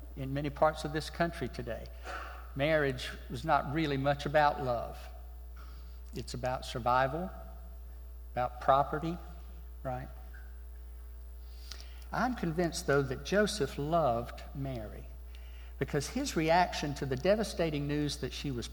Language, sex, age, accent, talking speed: English, male, 60-79, American, 120 wpm